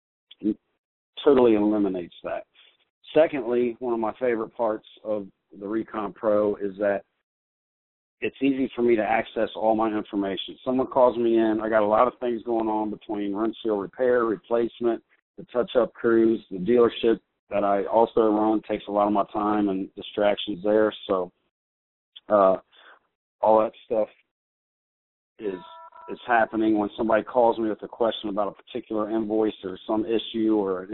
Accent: American